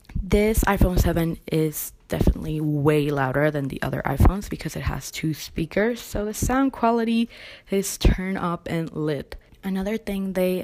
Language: English